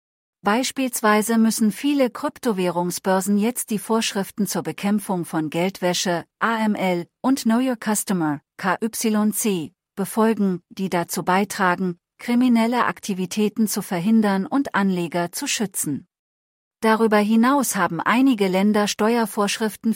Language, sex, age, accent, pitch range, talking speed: English, female, 40-59, German, 180-225 Hz, 105 wpm